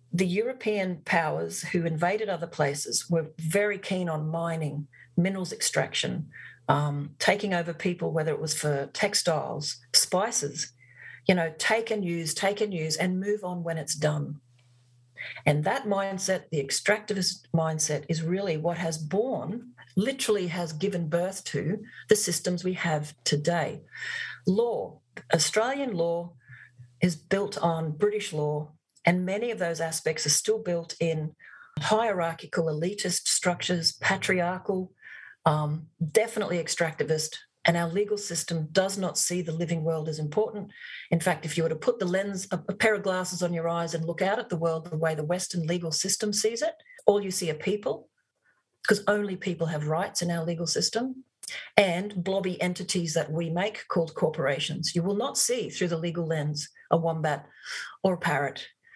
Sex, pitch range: female, 160-195 Hz